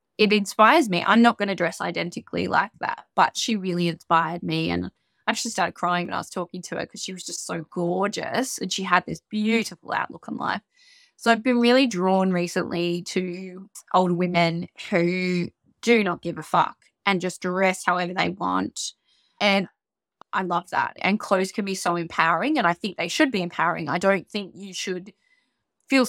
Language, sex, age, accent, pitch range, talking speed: English, female, 20-39, Australian, 175-215 Hz, 195 wpm